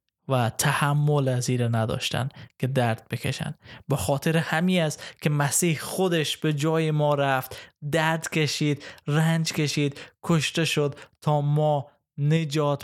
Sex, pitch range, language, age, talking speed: male, 125-150 Hz, Persian, 20-39, 125 wpm